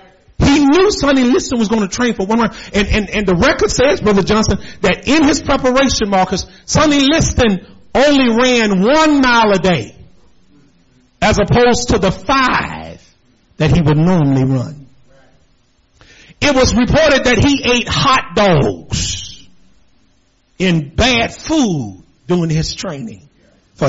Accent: American